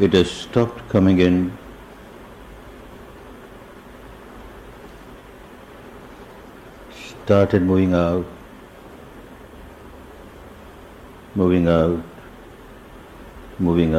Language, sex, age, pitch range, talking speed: Hindi, male, 60-79, 85-105 Hz, 45 wpm